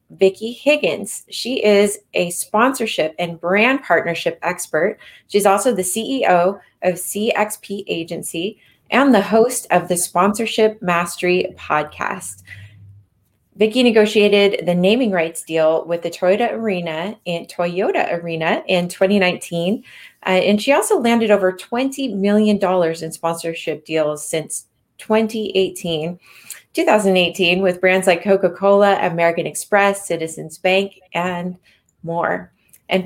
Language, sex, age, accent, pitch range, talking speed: English, female, 20-39, American, 175-215 Hz, 120 wpm